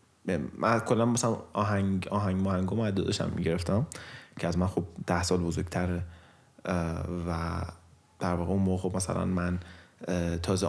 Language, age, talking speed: Persian, 30-49, 140 wpm